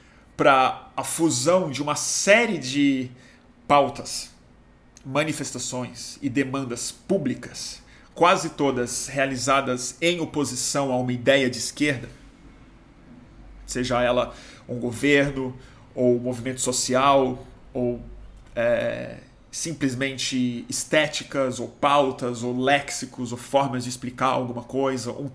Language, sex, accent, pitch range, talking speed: Portuguese, male, Brazilian, 125-155 Hz, 100 wpm